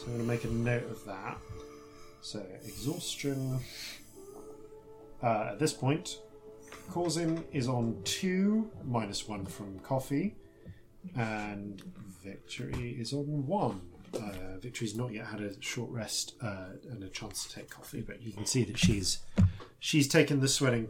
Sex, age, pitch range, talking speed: male, 40-59, 105-135 Hz, 150 wpm